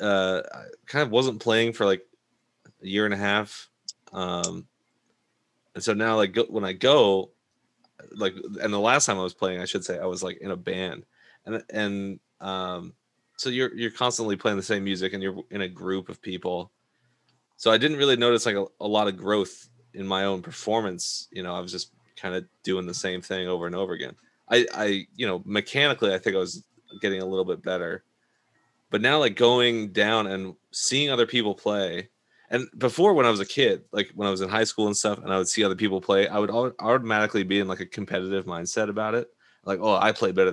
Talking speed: 220 wpm